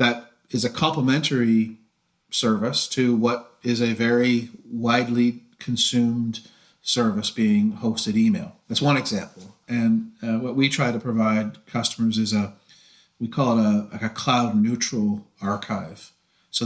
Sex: male